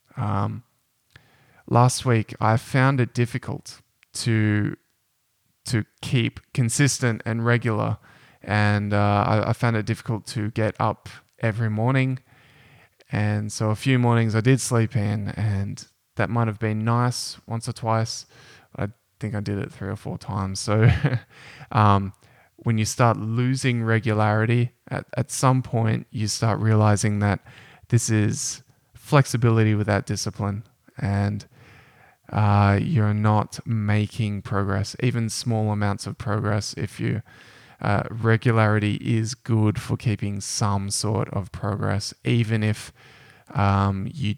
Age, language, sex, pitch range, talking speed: 20-39, English, male, 105-120 Hz, 135 wpm